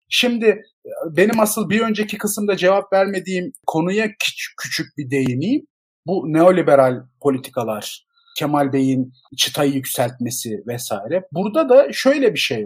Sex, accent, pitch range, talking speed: male, native, 145-215 Hz, 125 wpm